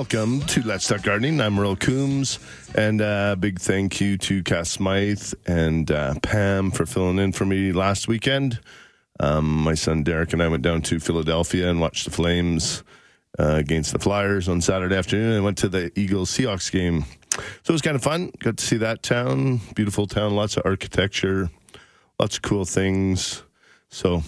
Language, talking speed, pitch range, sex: English, 185 wpm, 90-115 Hz, male